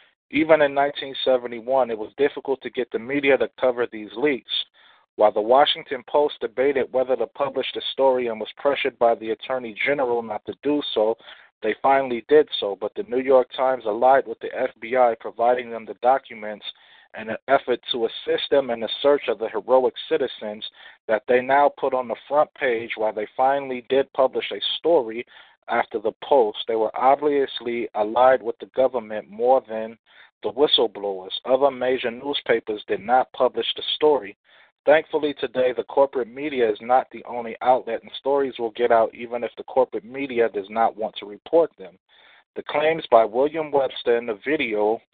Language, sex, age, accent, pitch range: Japanese, male, 40-59, American, 115-150 Hz